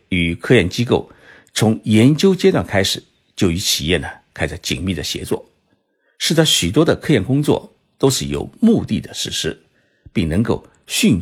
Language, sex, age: Chinese, male, 50-69